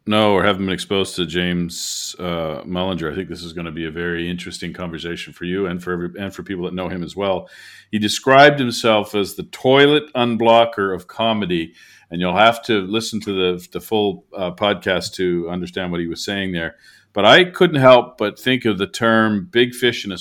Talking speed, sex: 215 wpm, male